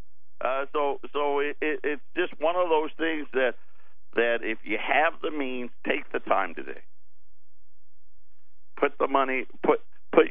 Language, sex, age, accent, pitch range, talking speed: English, male, 50-69, American, 125-170 Hz, 155 wpm